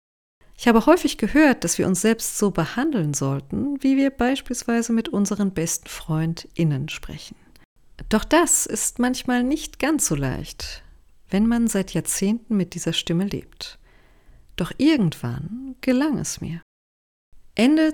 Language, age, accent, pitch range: German, 40-59, German, 155-245 Hz